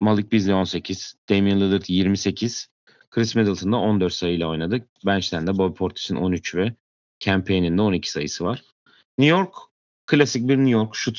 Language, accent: Turkish, native